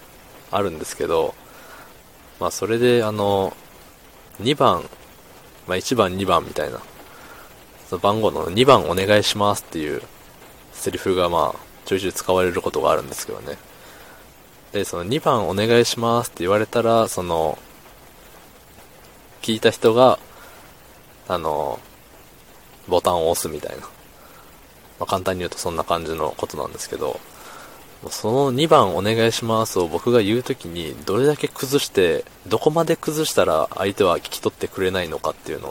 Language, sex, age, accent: Japanese, male, 20-39, native